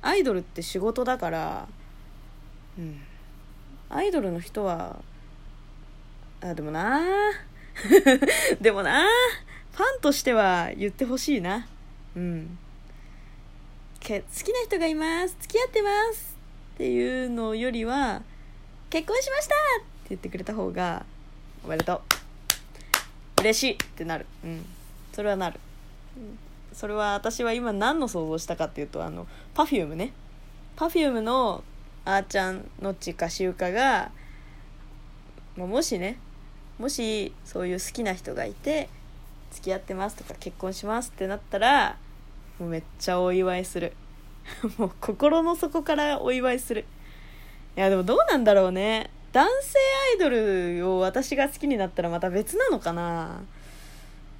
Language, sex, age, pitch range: Japanese, female, 20-39, 170-280 Hz